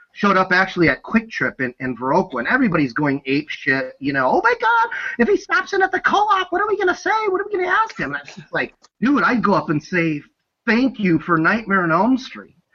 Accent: American